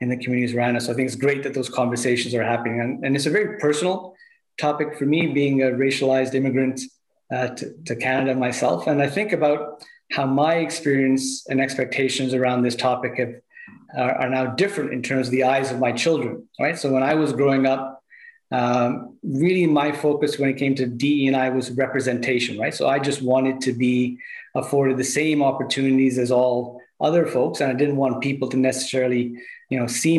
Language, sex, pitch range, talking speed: English, male, 125-145 Hz, 200 wpm